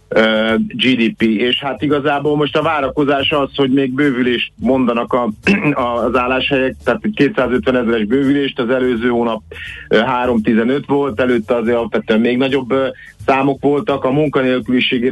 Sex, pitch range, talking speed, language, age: male, 125-140 Hz, 130 wpm, Hungarian, 50-69